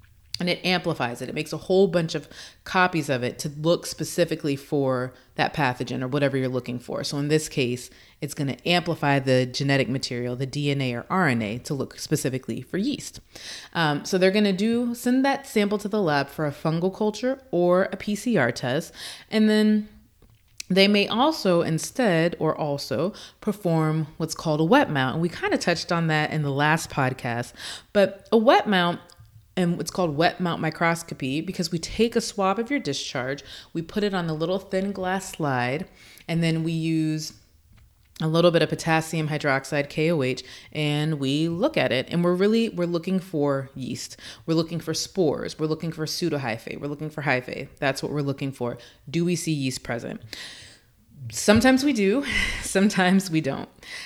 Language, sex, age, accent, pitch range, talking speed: English, female, 30-49, American, 135-185 Hz, 185 wpm